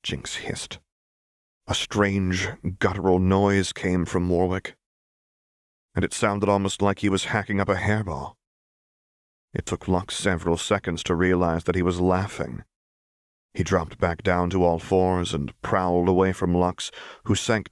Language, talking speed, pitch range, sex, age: English, 150 wpm, 80-95 Hz, male, 30-49